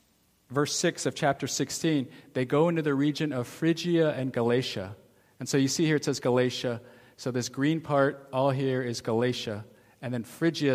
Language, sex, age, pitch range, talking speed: English, male, 40-59, 125-155 Hz, 185 wpm